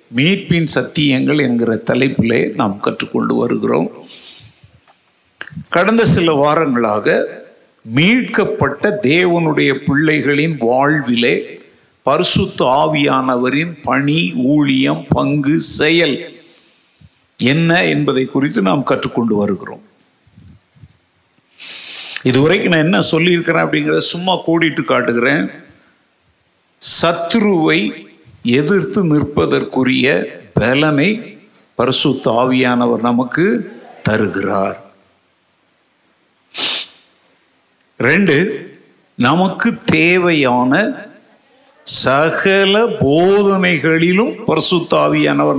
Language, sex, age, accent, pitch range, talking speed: Tamil, male, 60-79, native, 125-175 Hz, 65 wpm